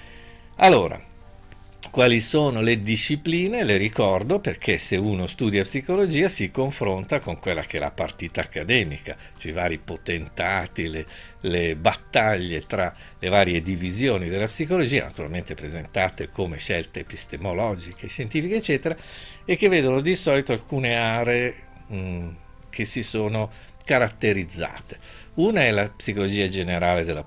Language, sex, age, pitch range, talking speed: Italian, male, 50-69, 85-120 Hz, 130 wpm